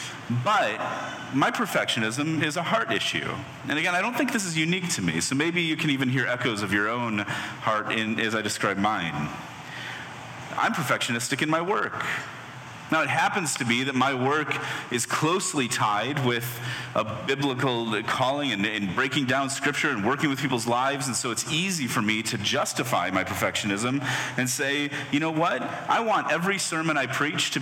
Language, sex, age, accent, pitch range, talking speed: English, male, 30-49, American, 120-155 Hz, 185 wpm